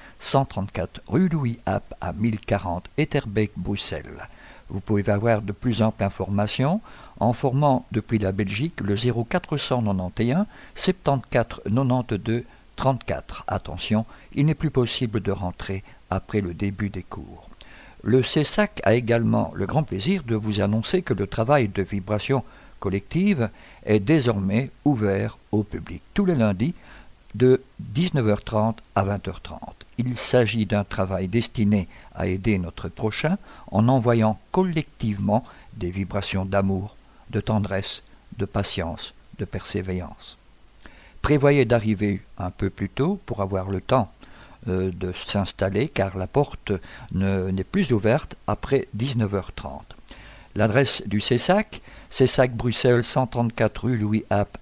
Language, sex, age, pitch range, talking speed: French, male, 60-79, 100-130 Hz, 125 wpm